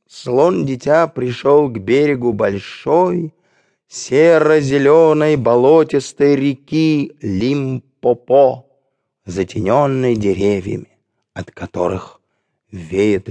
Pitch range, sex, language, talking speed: 125-175 Hz, male, English, 70 wpm